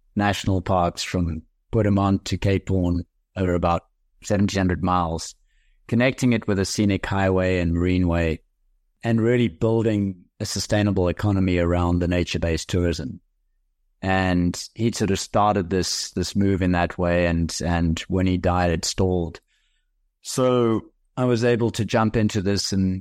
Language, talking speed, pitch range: English, 150 wpm, 85-100 Hz